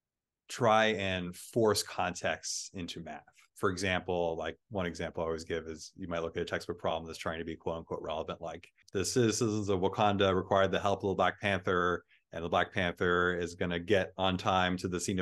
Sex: male